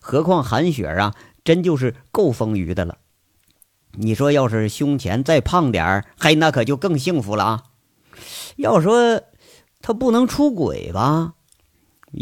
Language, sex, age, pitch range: Chinese, male, 50-69, 110-165 Hz